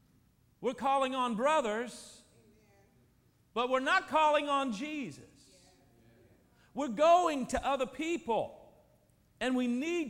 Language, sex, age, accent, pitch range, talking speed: English, male, 40-59, American, 155-235 Hz, 105 wpm